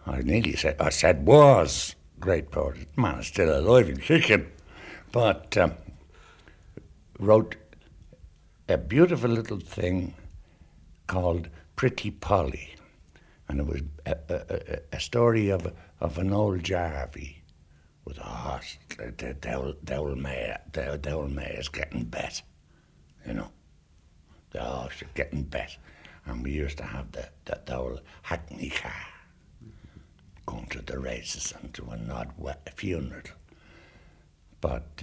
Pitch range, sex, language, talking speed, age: 75-90 Hz, male, English, 135 wpm, 60-79